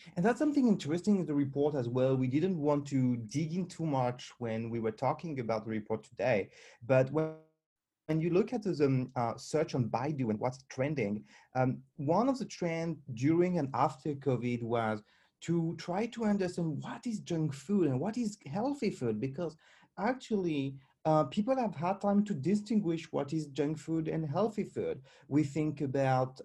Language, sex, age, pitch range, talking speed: English, male, 30-49, 135-190 Hz, 185 wpm